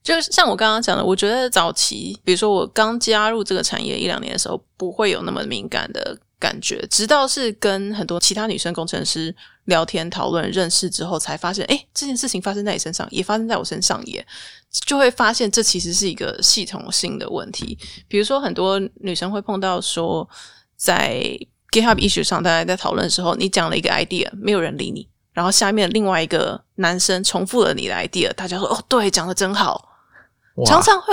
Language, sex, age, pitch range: Chinese, female, 20-39, 180-225 Hz